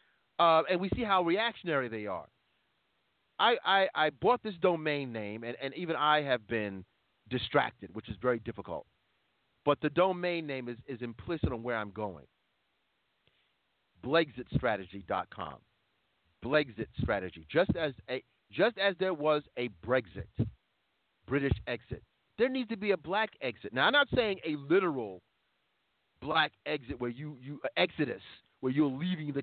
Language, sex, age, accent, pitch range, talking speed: English, male, 40-59, American, 125-180 Hz, 155 wpm